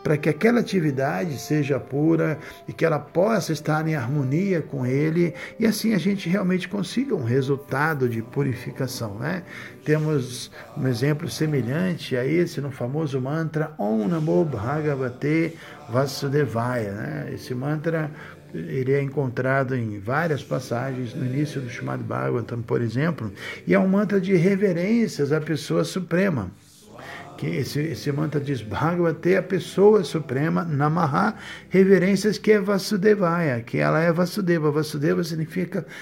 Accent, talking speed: Brazilian, 135 wpm